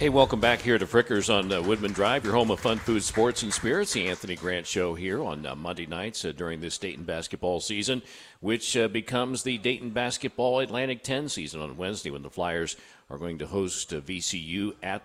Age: 50-69